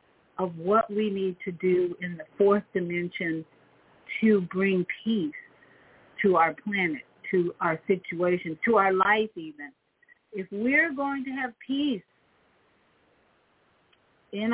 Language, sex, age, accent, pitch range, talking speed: English, female, 50-69, American, 180-225 Hz, 125 wpm